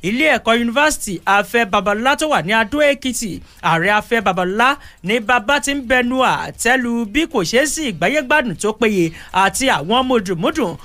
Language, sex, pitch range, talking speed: English, male, 200-270 Hz, 155 wpm